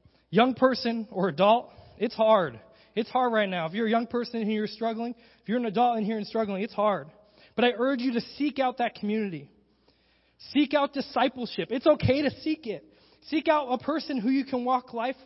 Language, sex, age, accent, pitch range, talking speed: English, male, 20-39, American, 180-235 Hz, 215 wpm